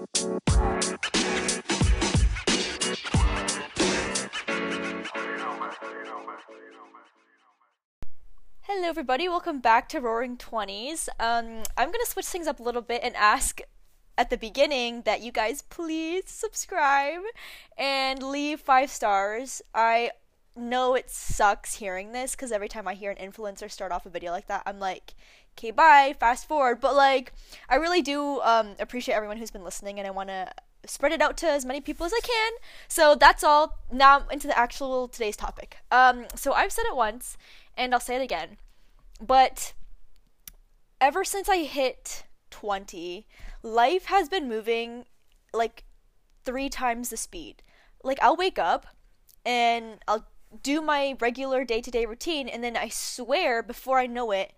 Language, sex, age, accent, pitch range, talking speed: English, female, 10-29, American, 220-285 Hz, 145 wpm